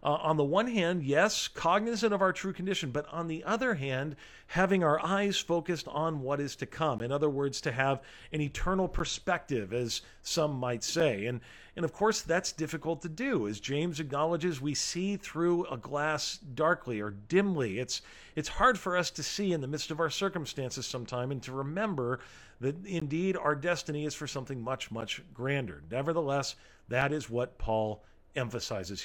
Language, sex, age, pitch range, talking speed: English, male, 40-59, 135-180 Hz, 185 wpm